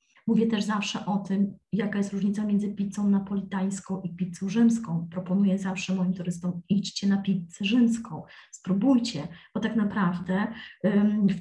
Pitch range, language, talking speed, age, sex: 185-225 Hz, Polish, 140 wpm, 30-49, female